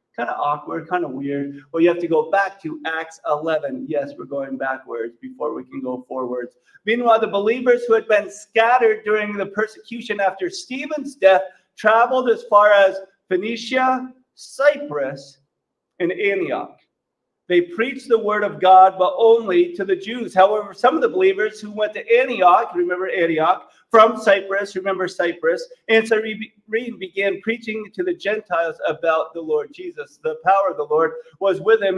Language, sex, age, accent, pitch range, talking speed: English, male, 40-59, American, 165-225 Hz, 170 wpm